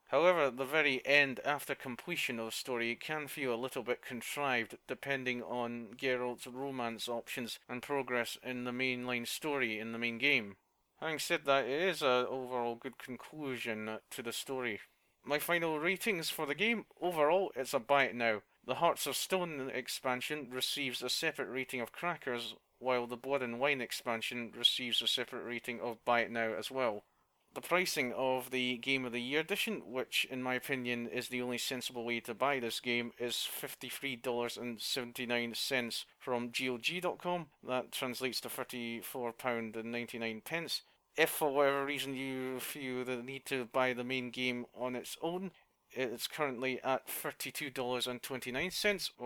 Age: 30-49